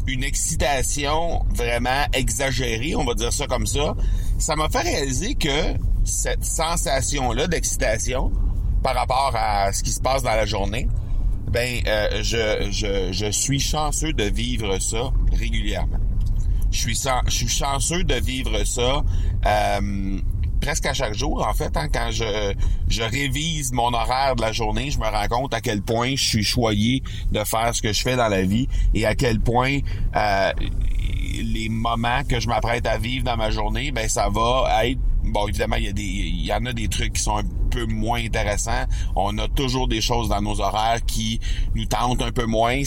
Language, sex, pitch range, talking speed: French, male, 100-120 Hz, 180 wpm